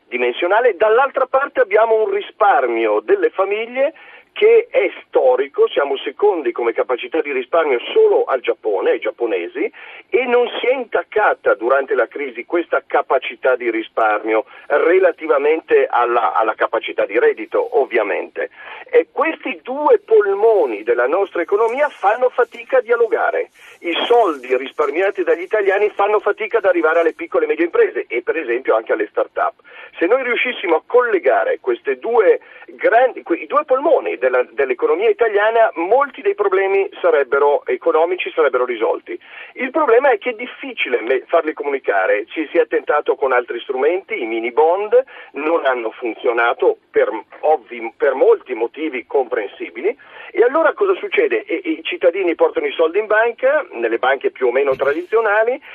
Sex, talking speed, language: male, 145 wpm, Italian